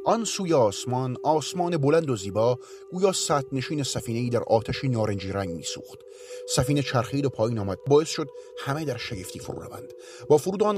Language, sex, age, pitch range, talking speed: Persian, male, 40-59, 120-190 Hz, 165 wpm